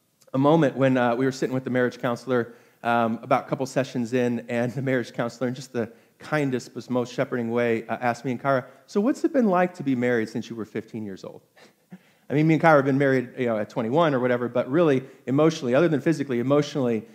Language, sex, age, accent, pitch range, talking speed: English, male, 40-59, American, 125-150 Hz, 230 wpm